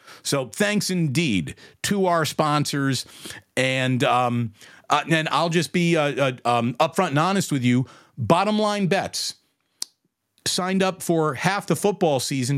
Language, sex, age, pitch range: English, male, 40-59, 135-175 Hz